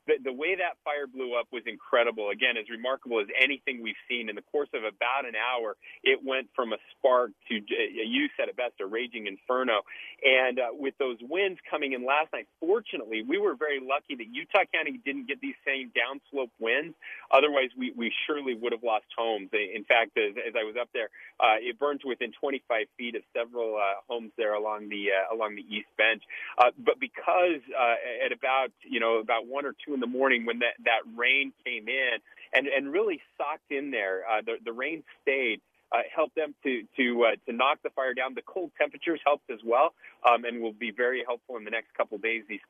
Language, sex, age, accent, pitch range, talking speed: English, male, 30-49, American, 115-150 Hz, 215 wpm